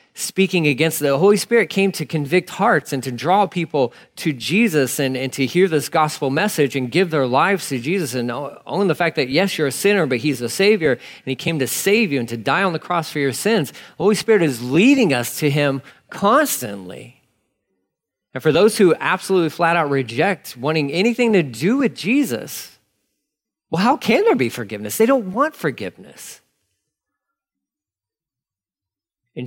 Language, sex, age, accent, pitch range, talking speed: English, male, 40-59, American, 120-190 Hz, 180 wpm